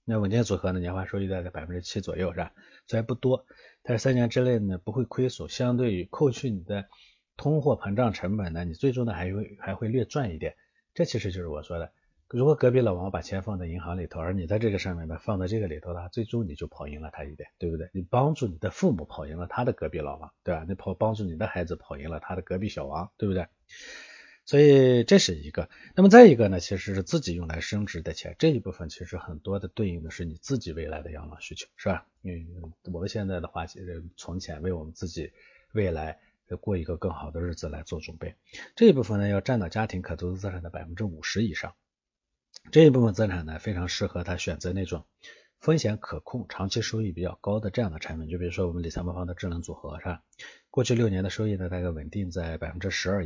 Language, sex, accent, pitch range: Chinese, male, native, 85-115 Hz